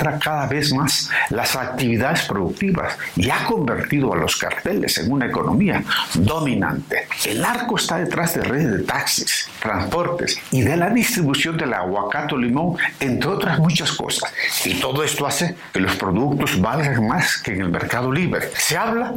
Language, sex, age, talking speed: Spanish, male, 60-79, 165 wpm